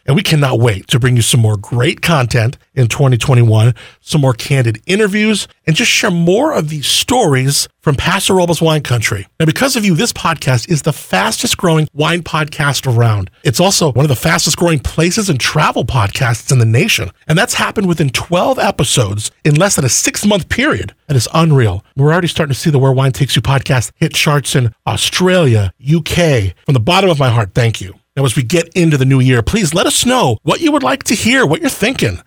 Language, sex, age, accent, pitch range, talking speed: English, male, 40-59, American, 125-180 Hz, 215 wpm